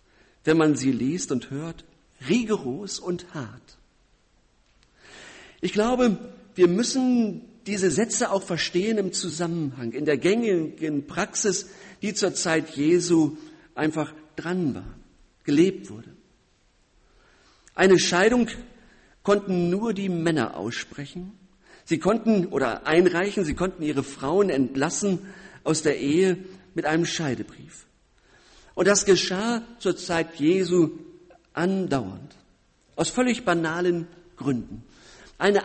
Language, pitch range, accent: German, 165-210 Hz, German